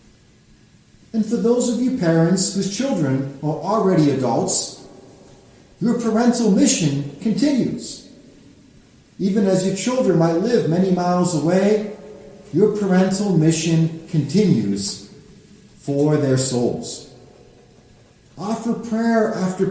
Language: English